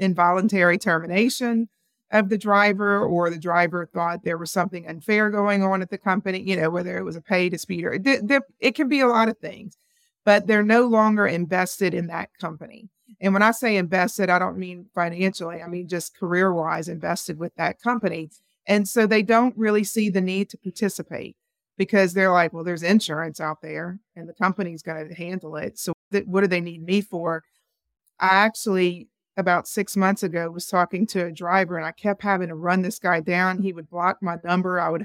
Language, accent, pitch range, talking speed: English, American, 175-215 Hz, 205 wpm